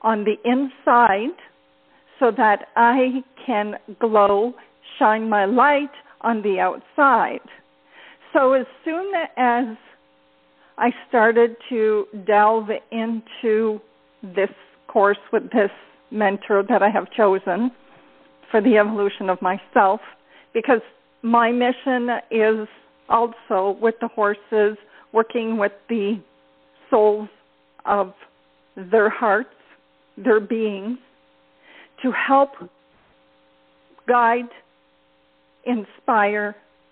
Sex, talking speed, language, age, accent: female, 95 wpm, English, 50-69, American